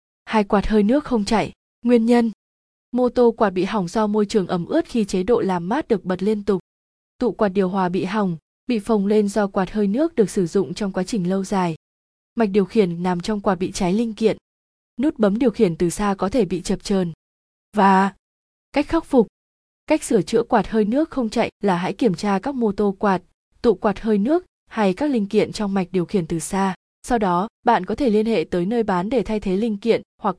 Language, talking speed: Vietnamese, 235 wpm